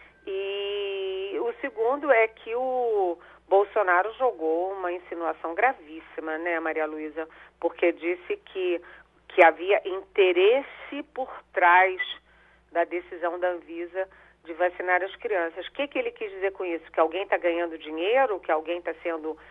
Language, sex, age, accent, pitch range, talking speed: Portuguese, female, 40-59, Brazilian, 170-260 Hz, 145 wpm